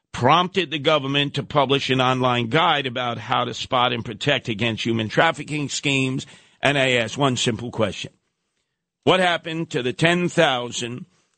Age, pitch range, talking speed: 50-69, 120-155 Hz, 155 wpm